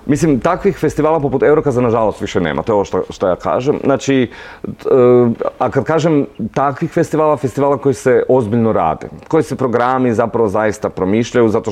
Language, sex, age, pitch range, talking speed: Croatian, male, 30-49, 105-135 Hz, 175 wpm